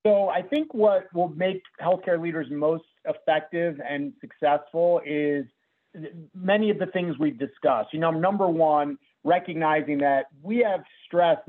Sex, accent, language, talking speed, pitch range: male, American, English, 145 wpm, 150-185 Hz